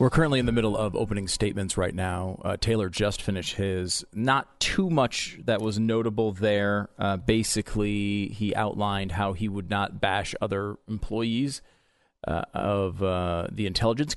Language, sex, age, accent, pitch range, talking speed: English, male, 30-49, American, 95-115 Hz, 160 wpm